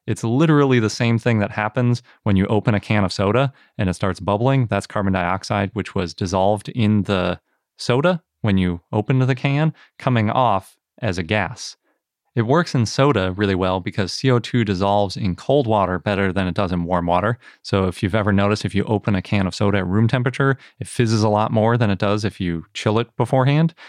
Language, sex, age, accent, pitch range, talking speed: English, male, 30-49, American, 95-120 Hz, 210 wpm